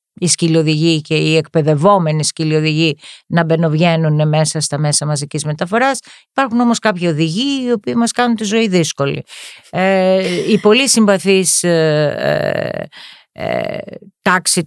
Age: 40-59